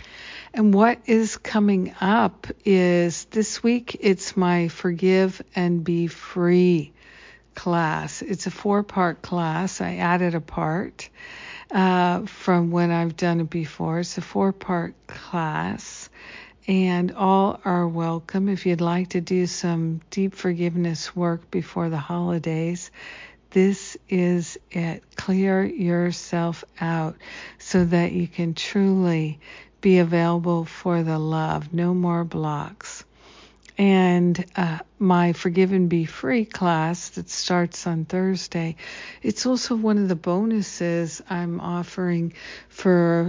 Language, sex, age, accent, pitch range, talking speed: English, female, 60-79, American, 170-190 Hz, 125 wpm